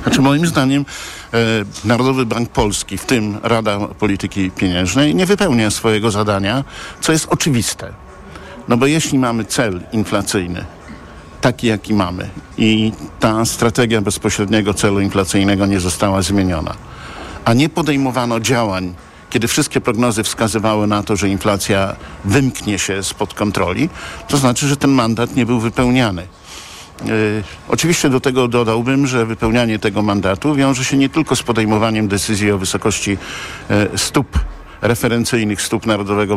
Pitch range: 100-130 Hz